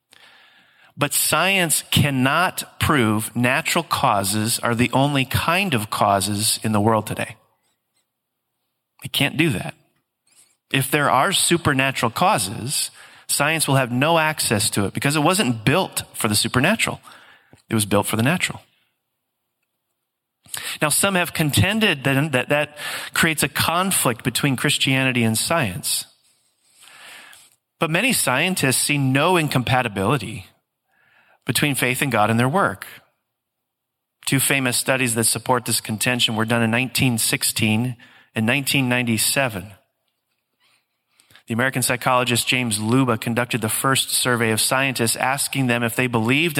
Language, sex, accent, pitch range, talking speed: English, male, American, 115-145 Hz, 130 wpm